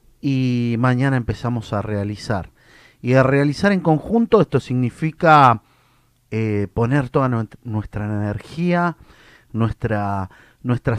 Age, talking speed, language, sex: 40-59, 105 wpm, Spanish, male